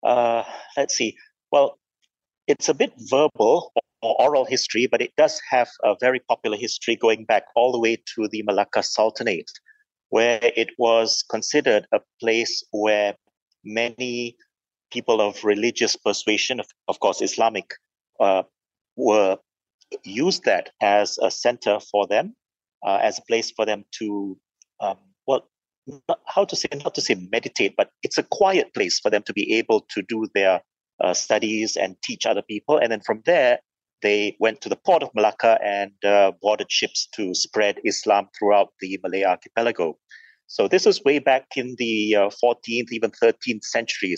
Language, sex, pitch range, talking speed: English, male, 105-125 Hz, 165 wpm